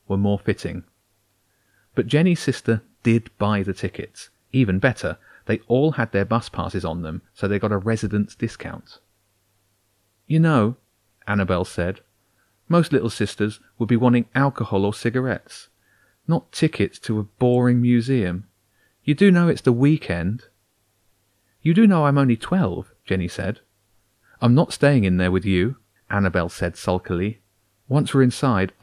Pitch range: 95-115 Hz